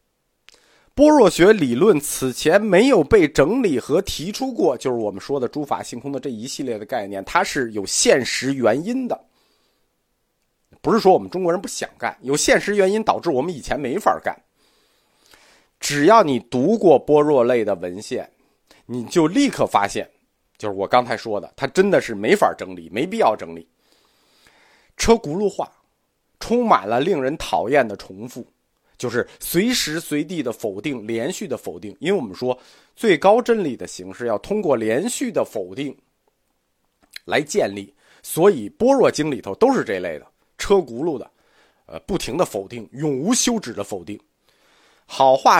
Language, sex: Chinese, male